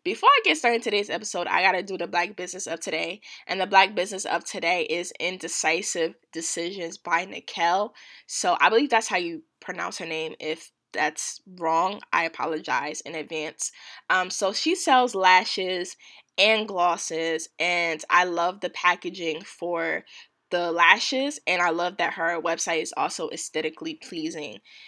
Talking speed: 160 wpm